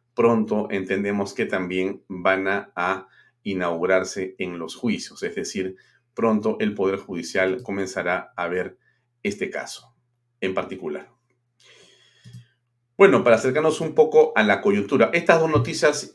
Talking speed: 125 wpm